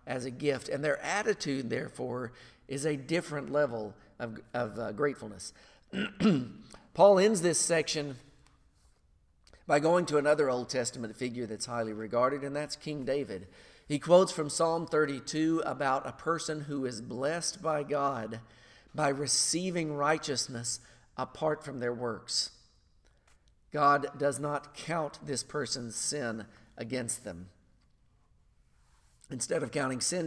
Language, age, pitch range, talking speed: English, 50-69, 120-155 Hz, 130 wpm